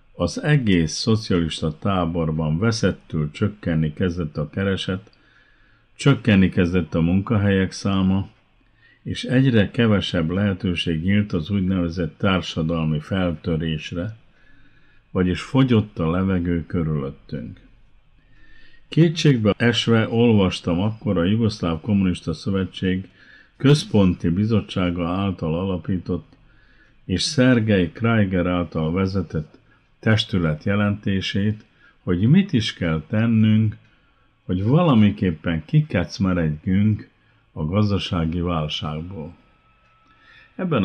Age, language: 50-69, Hungarian